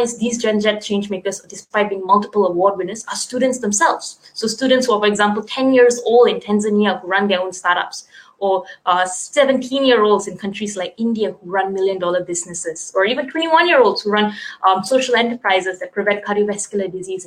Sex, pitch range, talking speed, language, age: female, 195-235 Hz, 200 wpm, English, 20-39